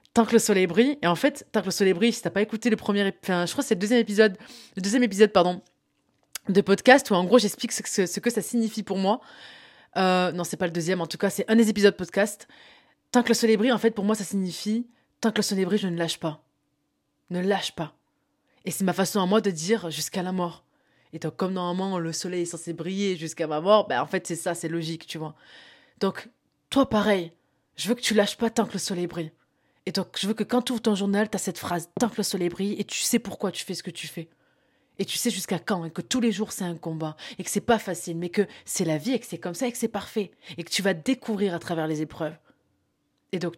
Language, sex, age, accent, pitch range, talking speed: French, female, 20-39, French, 170-220 Hz, 275 wpm